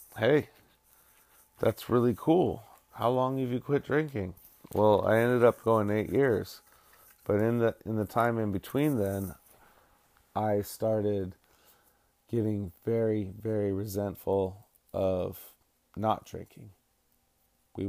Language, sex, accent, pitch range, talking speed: English, male, American, 100-115 Hz, 120 wpm